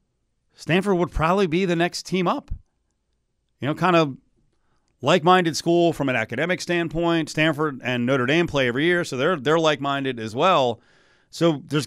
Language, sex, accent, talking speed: English, male, American, 165 wpm